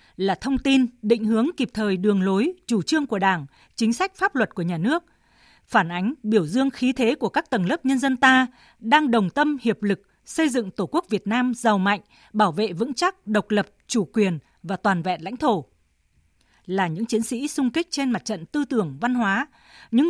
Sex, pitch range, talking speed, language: female, 200-270 Hz, 220 wpm, Vietnamese